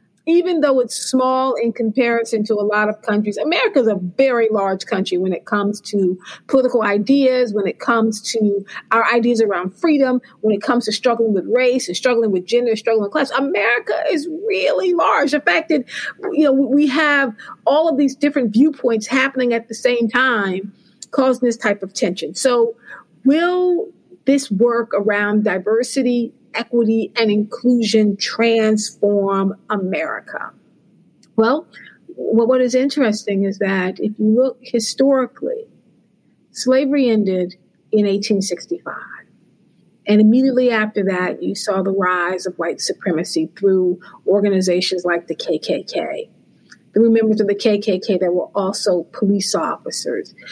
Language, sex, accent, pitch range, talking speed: English, female, American, 200-250 Hz, 140 wpm